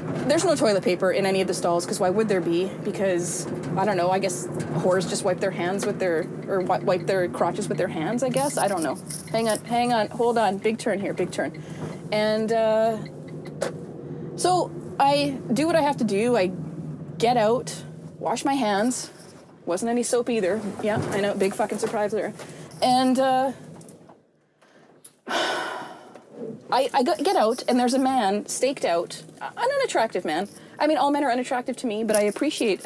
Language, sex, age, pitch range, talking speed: English, female, 20-39, 190-250 Hz, 190 wpm